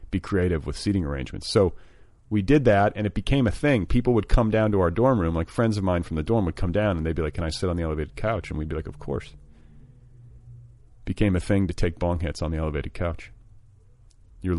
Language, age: English, 40-59